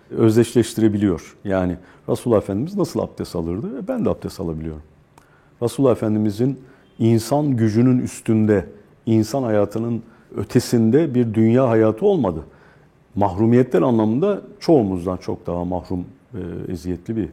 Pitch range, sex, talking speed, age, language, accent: 95-145 Hz, male, 110 wpm, 50-69, Turkish, native